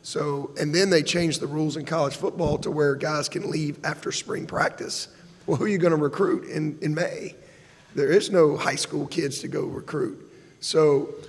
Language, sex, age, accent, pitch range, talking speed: English, male, 40-59, American, 145-170 Hz, 200 wpm